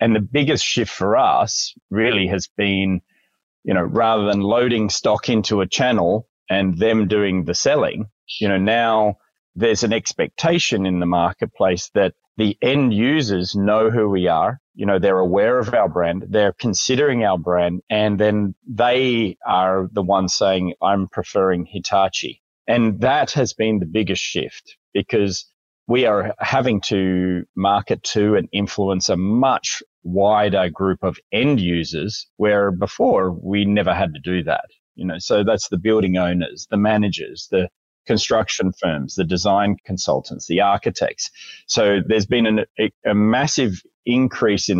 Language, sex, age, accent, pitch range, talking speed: English, male, 30-49, Australian, 90-105 Hz, 160 wpm